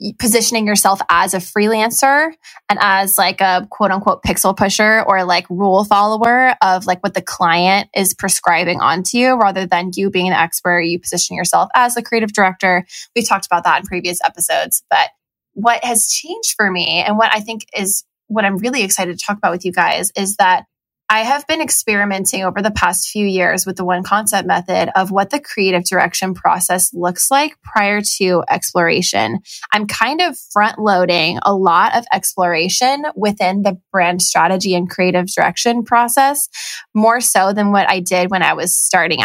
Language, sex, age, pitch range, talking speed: English, female, 20-39, 185-230 Hz, 180 wpm